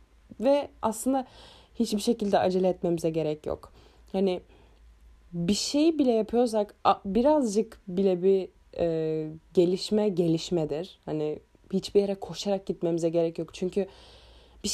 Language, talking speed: Turkish, 115 wpm